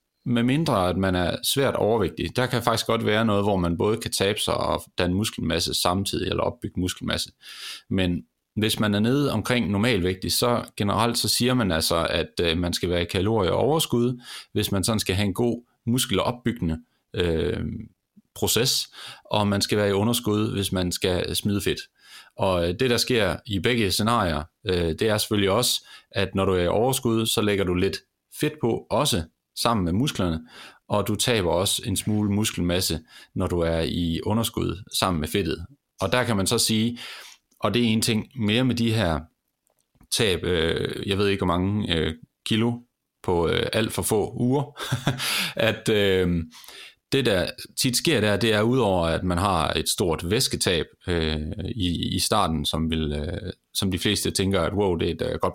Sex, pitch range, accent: male, 90-115 Hz, native